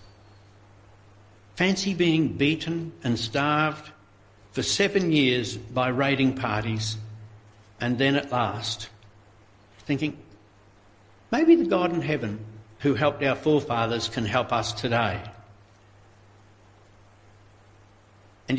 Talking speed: 95 wpm